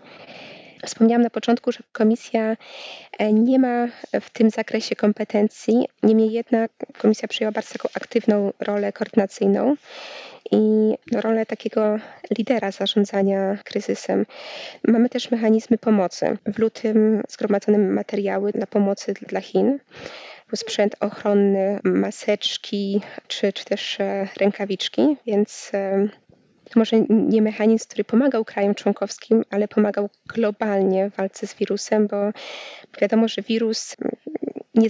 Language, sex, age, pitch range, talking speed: Polish, female, 20-39, 200-225 Hz, 115 wpm